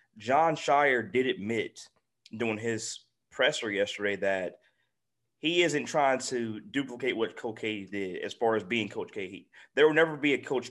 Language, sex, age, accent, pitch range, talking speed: English, male, 20-39, American, 110-130 Hz, 170 wpm